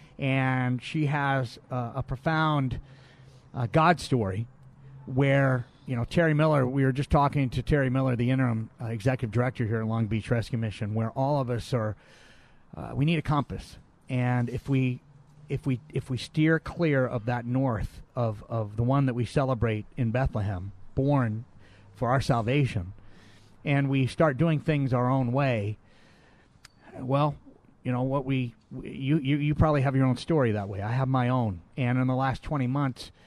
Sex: male